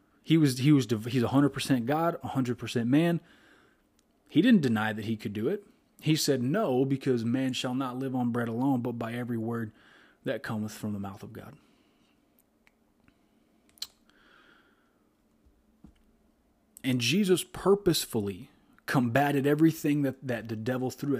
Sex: male